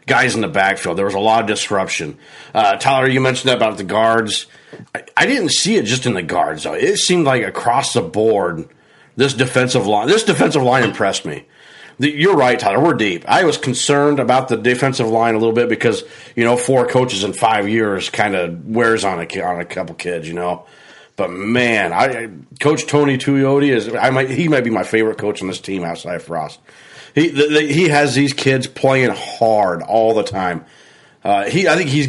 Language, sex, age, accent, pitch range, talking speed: English, male, 40-59, American, 105-135 Hz, 215 wpm